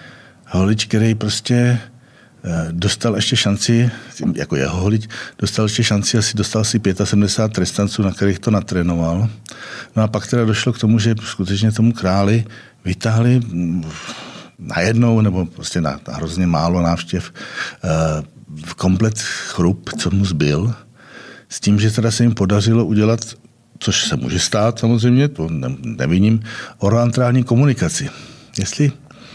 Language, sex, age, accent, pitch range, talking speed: Czech, male, 60-79, native, 100-120 Hz, 130 wpm